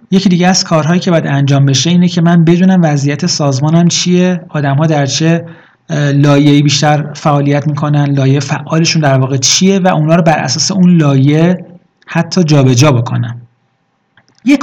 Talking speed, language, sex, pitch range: 155 wpm, Persian, male, 140-175 Hz